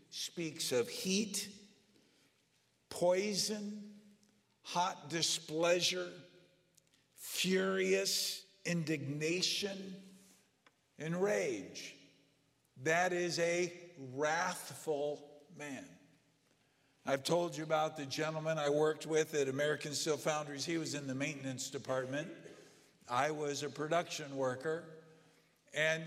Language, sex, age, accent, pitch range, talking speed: English, male, 50-69, American, 140-175 Hz, 90 wpm